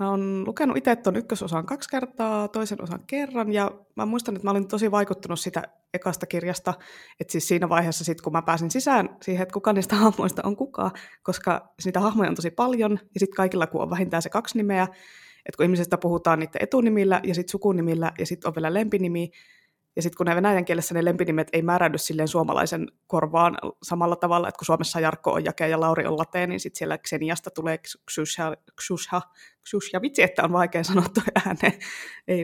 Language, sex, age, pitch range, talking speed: Finnish, female, 20-39, 170-215 Hz, 185 wpm